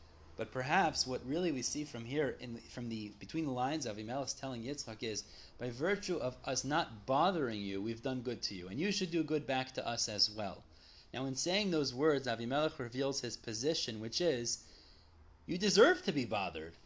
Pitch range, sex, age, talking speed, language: 120-170 Hz, male, 30-49, 205 wpm, English